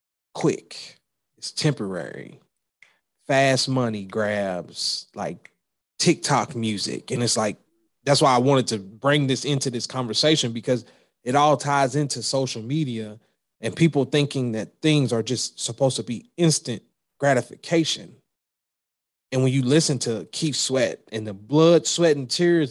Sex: male